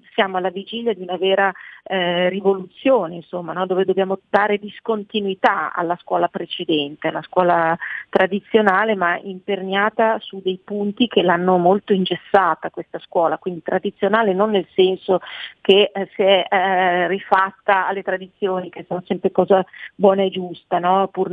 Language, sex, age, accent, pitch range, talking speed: Italian, female, 40-59, native, 175-200 Hz, 145 wpm